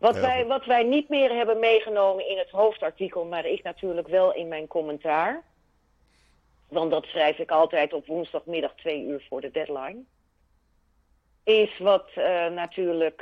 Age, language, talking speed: 40-59, Dutch, 155 wpm